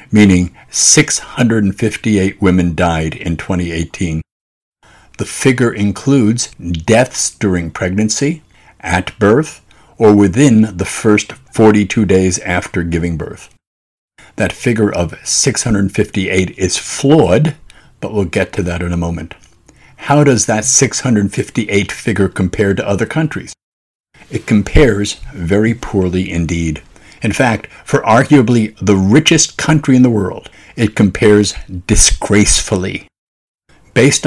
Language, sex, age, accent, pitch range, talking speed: English, male, 60-79, American, 95-115 Hz, 115 wpm